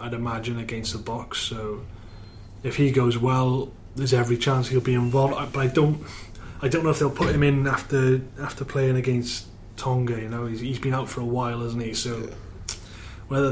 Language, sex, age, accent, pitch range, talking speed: English, male, 20-39, British, 110-130 Hz, 200 wpm